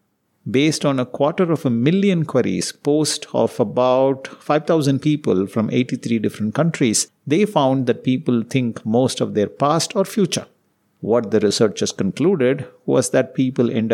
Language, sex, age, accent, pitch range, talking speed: English, male, 50-69, Indian, 105-140 Hz, 155 wpm